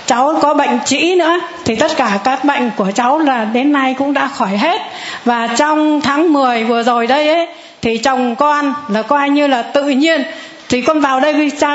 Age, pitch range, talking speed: 60-79, 255-325 Hz, 210 wpm